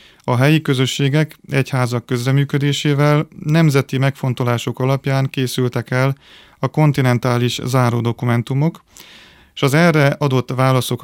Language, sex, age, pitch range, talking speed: Hungarian, male, 30-49, 125-145 Hz, 105 wpm